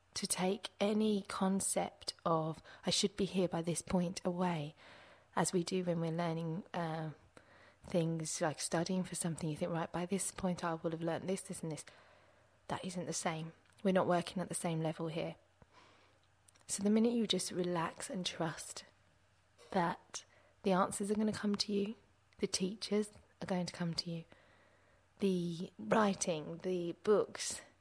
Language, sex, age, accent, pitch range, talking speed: English, female, 20-39, British, 165-190 Hz, 175 wpm